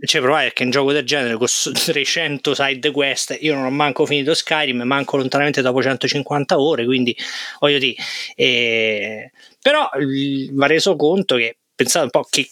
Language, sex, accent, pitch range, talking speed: Italian, male, native, 130-165 Hz, 175 wpm